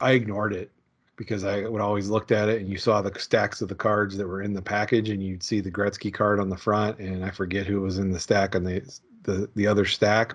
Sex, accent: male, American